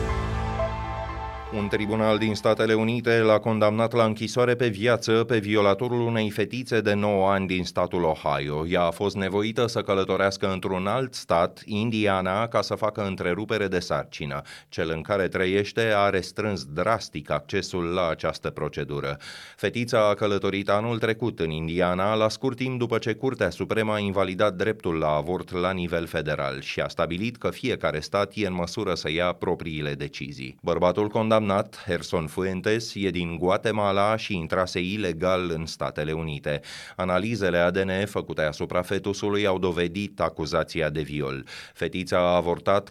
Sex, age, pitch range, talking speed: male, 30-49, 90-110 Hz, 155 wpm